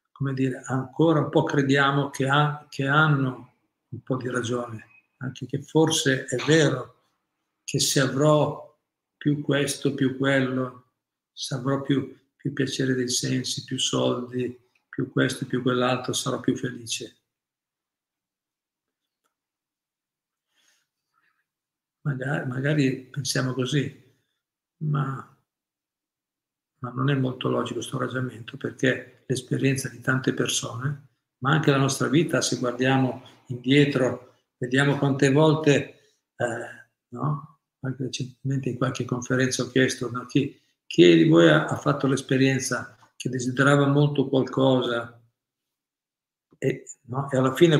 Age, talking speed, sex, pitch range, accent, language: 50-69, 120 wpm, male, 130-145 Hz, native, Italian